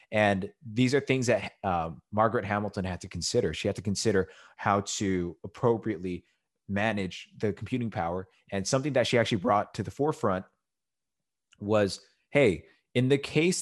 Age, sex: 20-39, male